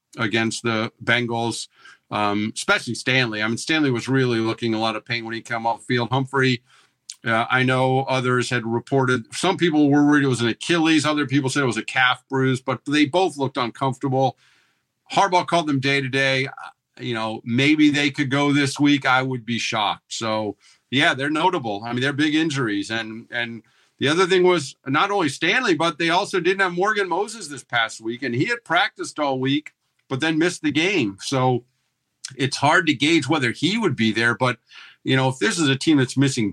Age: 50-69